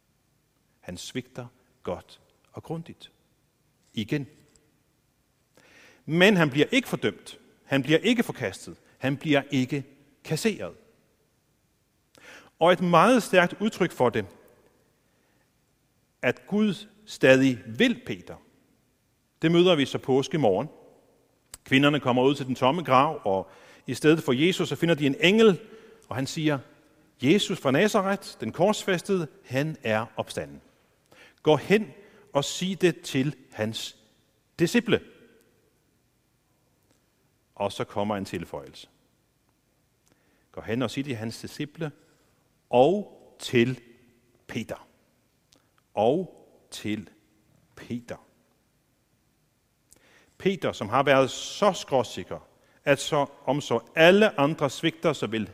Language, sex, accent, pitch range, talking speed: Danish, male, native, 125-170 Hz, 115 wpm